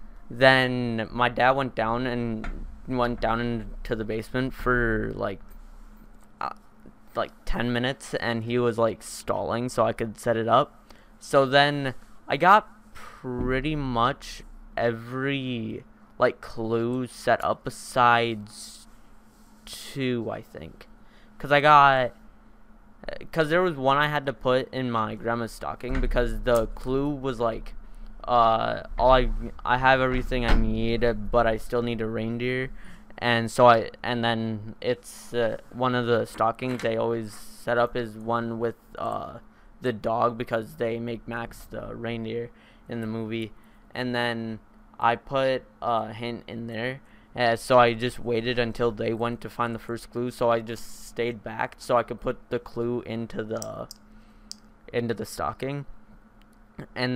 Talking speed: 150 wpm